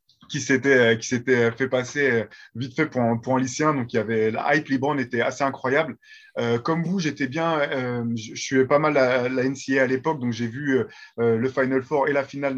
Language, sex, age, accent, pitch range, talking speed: French, male, 20-39, French, 125-160 Hz, 240 wpm